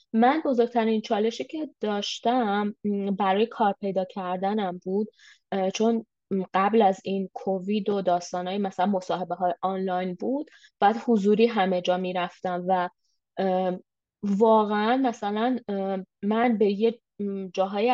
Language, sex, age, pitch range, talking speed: Persian, female, 20-39, 195-235 Hz, 115 wpm